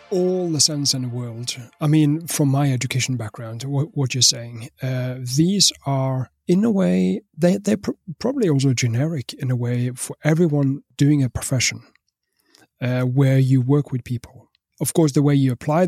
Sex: male